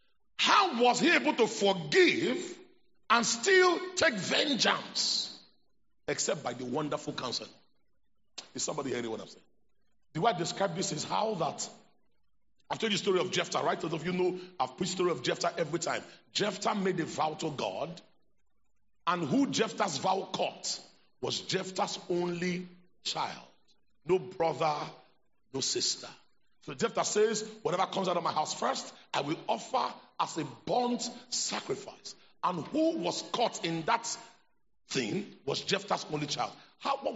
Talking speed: 160 wpm